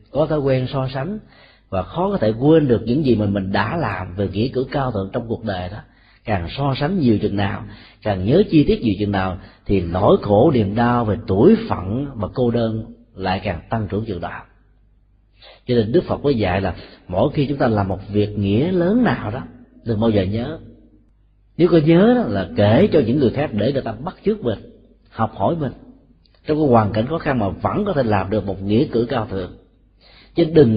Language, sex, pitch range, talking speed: Vietnamese, male, 105-140 Hz, 225 wpm